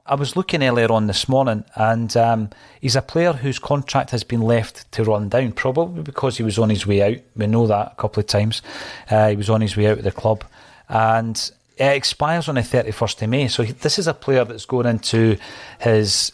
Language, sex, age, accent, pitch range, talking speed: English, male, 40-59, British, 110-125 Hz, 230 wpm